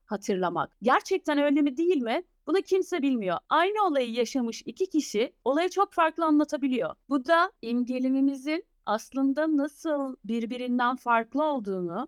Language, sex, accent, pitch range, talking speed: Turkish, female, native, 230-320 Hz, 130 wpm